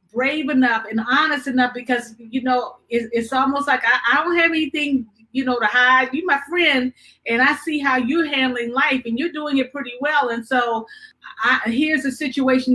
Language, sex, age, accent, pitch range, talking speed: English, female, 40-59, American, 235-280 Hz, 200 wpm